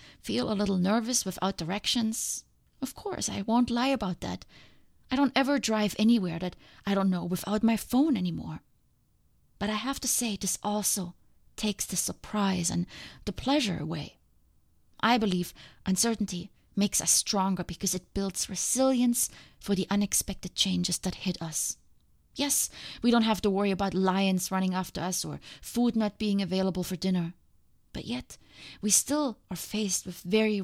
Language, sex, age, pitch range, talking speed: English, female, 20-39, 185-220 Hz, 165 wpm